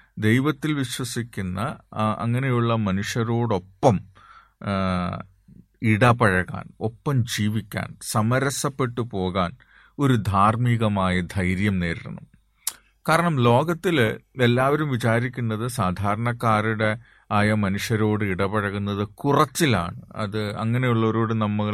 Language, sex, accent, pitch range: Malayalam, male, native, 100-130 Hz